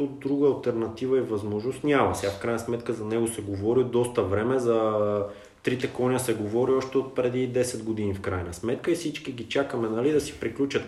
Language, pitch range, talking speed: Bulgarian, 100-135 Hz, 205 wpm